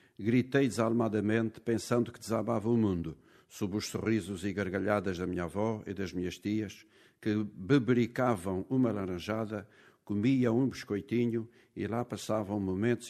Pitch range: 100-120 Hz